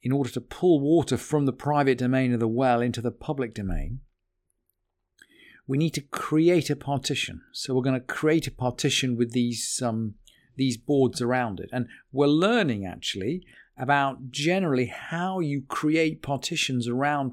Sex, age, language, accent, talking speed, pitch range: male, 40-59, English, British, 160 wpm, 120-160 Hz